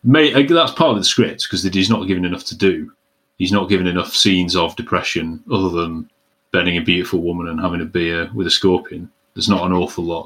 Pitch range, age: 90-120 Hz, 30-49